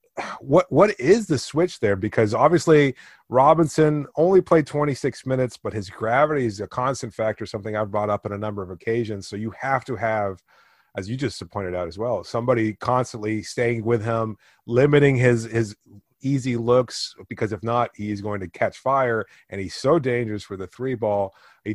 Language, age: English, 30-49